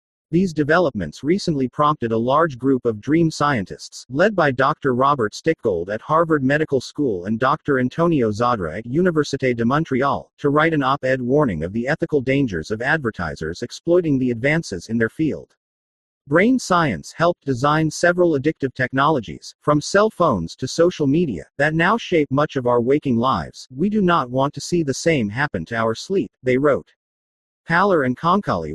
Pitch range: 120-160 Hz